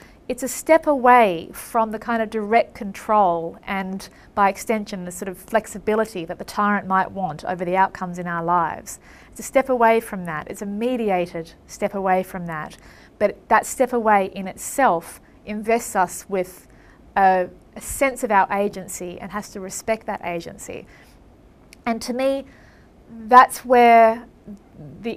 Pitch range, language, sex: 185-225 Hz, English, female